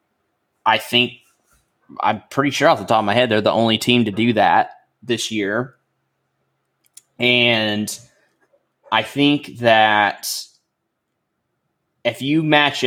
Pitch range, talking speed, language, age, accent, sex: 110-130 Hz, 125 wpm, English, 20-39, American, male